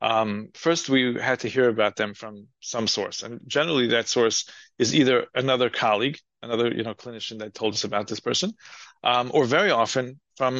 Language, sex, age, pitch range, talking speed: English, male, 30-49, 110-130 Hz, 195 wpm